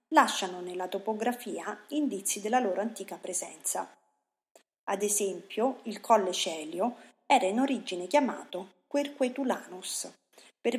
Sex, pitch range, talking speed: female, 190-275 Hz, 105 wpm